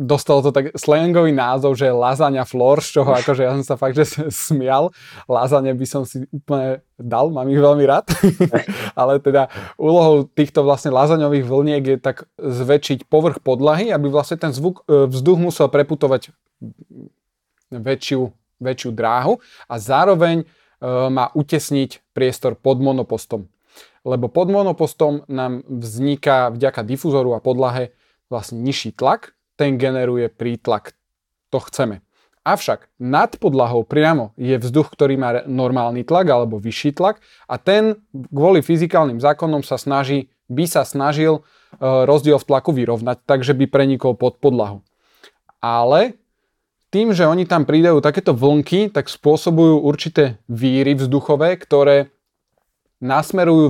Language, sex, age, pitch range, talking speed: Slovak, male, 20-39, 130-155 Hz, 135 wpm